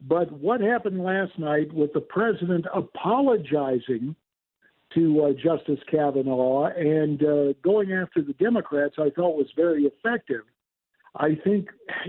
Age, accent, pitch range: 60-79, American, 155-205 Hz